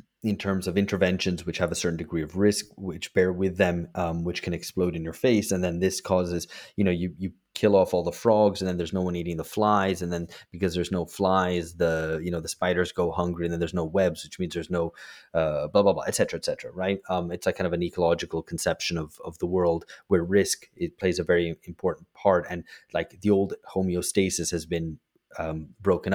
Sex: male